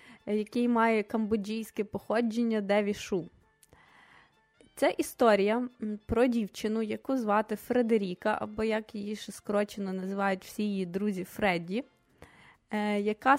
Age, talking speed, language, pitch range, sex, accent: 20-39, 105 wpm, Ukrainian, 210-260 Hz, female, native